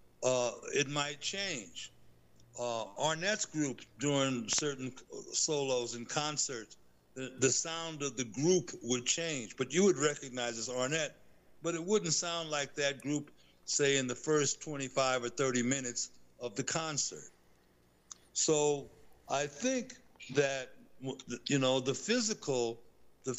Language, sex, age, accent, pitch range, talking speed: English, male, 60-79, American, 115-150 Hz, 135 wpm